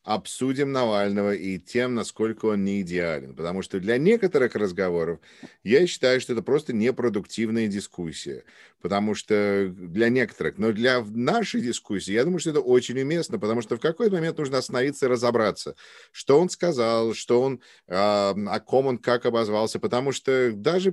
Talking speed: 155 wpm